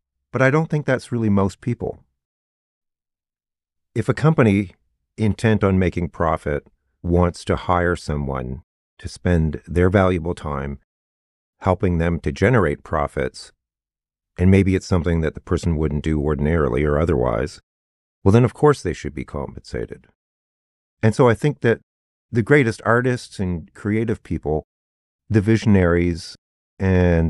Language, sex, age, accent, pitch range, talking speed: English, male, 40-59, American, 75-105 Hz, 140 wpm